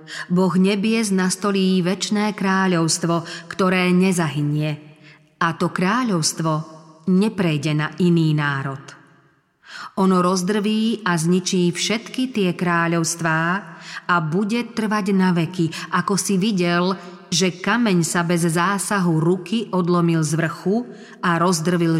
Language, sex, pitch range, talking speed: Slovak, female, 170-200 Hz, 105 wpm